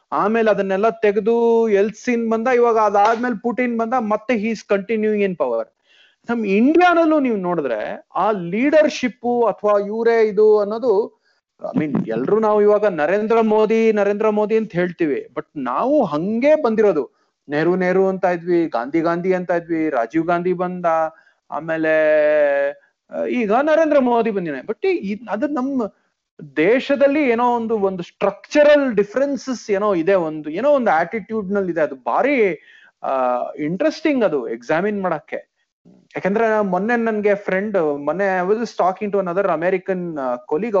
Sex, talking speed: male, 130 wpm